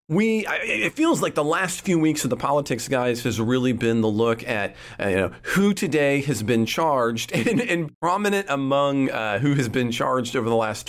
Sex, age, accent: male, 40-59, American